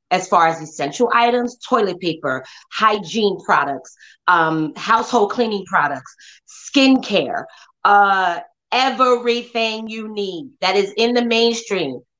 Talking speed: 115 wpm